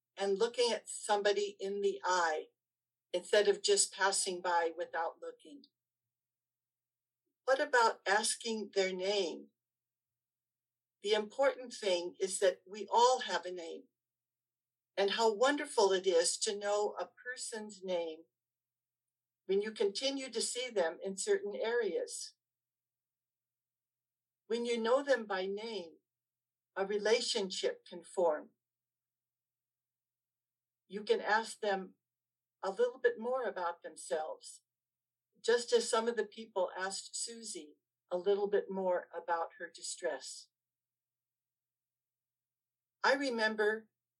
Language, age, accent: English, 60-79, American